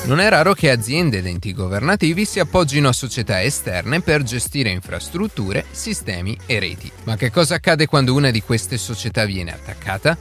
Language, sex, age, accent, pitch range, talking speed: Italian, male, 30-49, native, 105-150 Hz, 175 wpm